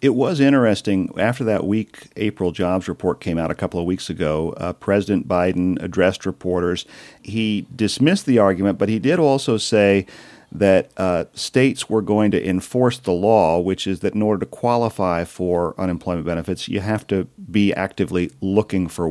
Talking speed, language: 175 wpm, English